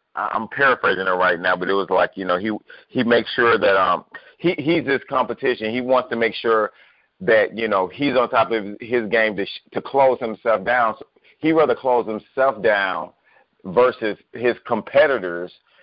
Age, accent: 40-59, American